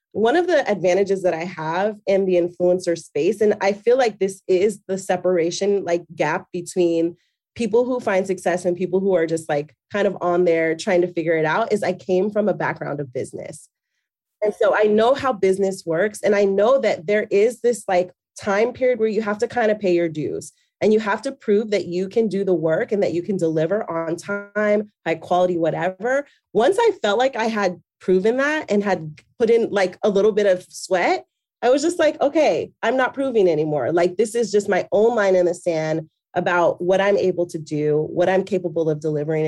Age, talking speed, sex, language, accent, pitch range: 30-49, 220 wpm, female, English, American, 170-210 Hz